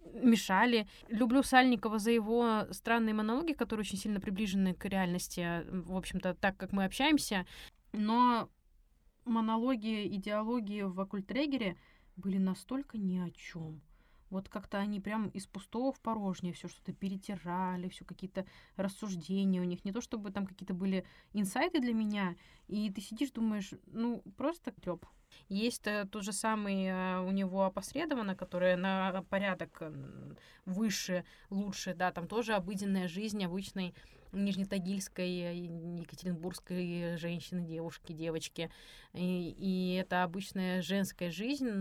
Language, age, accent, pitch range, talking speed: Russian, 20-39, native, 180-215 Hz, 130 wpm